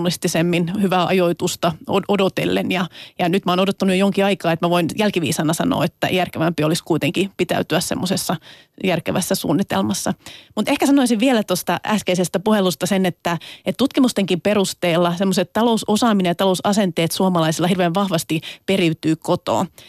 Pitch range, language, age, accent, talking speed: 175-205 Hz, Finnish, 30-49, native, 140 wpm